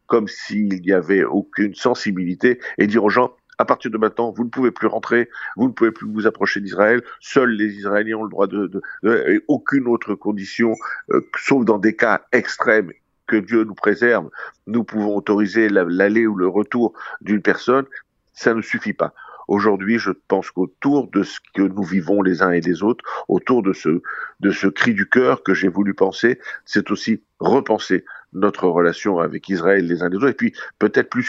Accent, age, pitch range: French, 50-69, 95-115 Hz